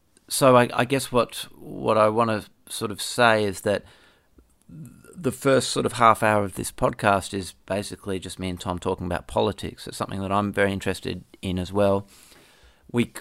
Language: English